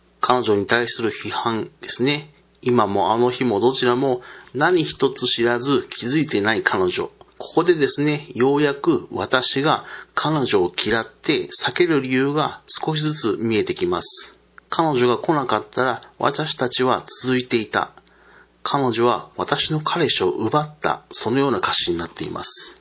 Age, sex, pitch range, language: 40-59, male, 125-170 Hz, Japanese